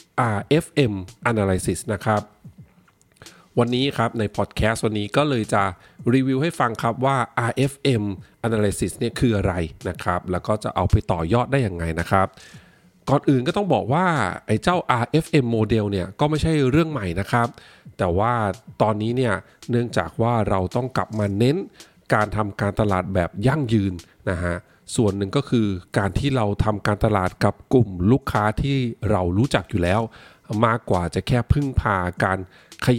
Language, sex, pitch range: Thai, male, 95-125 Hz